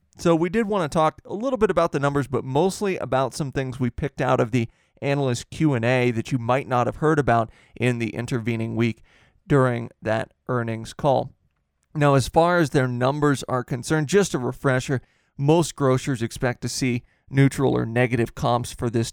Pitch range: 120-145 Hz